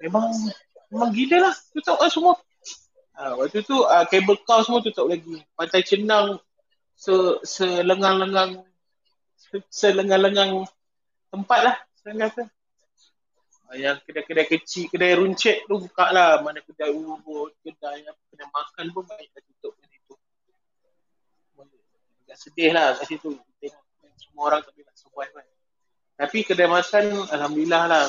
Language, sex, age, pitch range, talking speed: Malay, male, 30-49, 150-215 Hz, 120 wpm